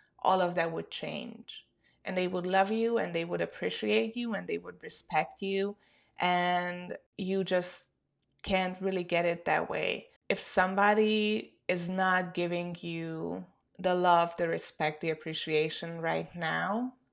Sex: female